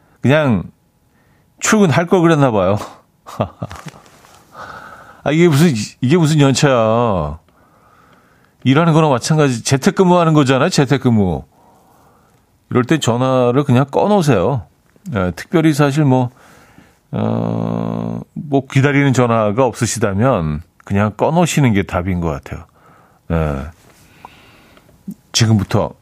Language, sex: Korean, male